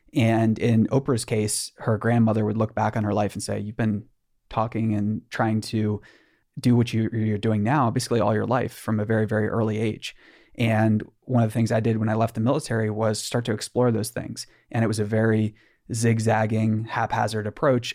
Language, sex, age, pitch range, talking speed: English, male, 20-39, 110-120 Hz, 205 wpm